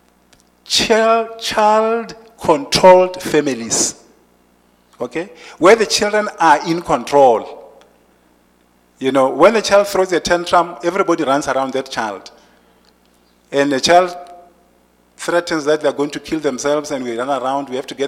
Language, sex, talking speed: English, male, 135 wpm